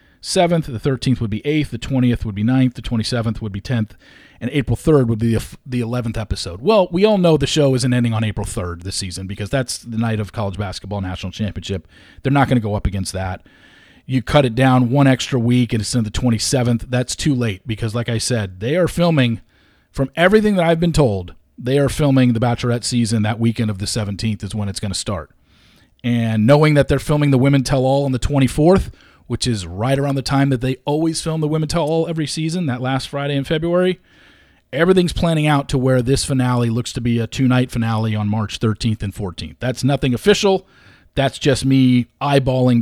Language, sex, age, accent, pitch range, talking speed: English, male, 40-59, American, 110-140 Hz, 220 wpm